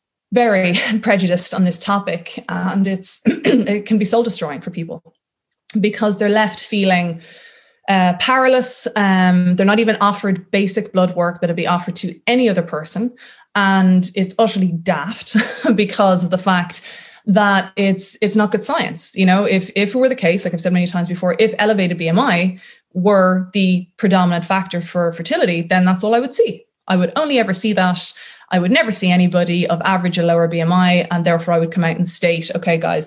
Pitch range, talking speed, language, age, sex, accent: 175-210 Hz, 190 wpm, English, 20-39, female, Irish